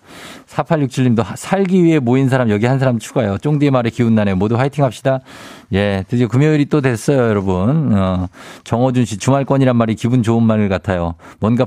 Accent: native